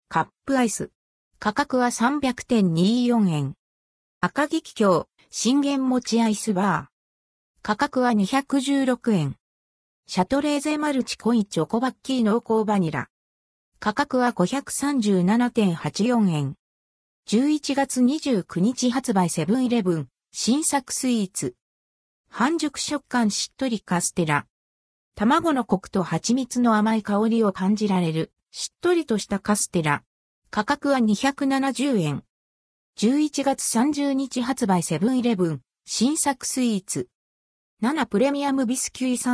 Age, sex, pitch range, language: 50-69, female, 175-255 Hz, Japanese